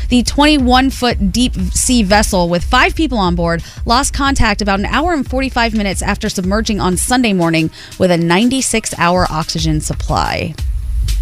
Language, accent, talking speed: English, American, 150 wpm